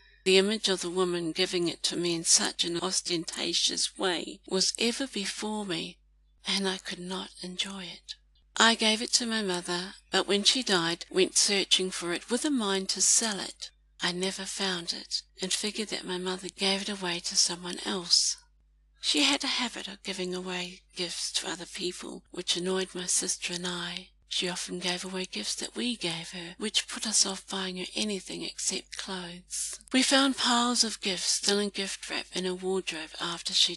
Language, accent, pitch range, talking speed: English, British, 180-205 Hz, 190 wpm